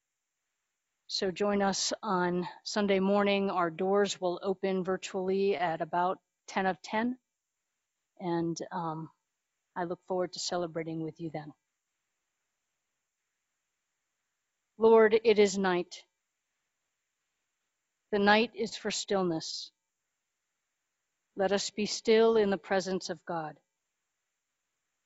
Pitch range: 185-225 Hz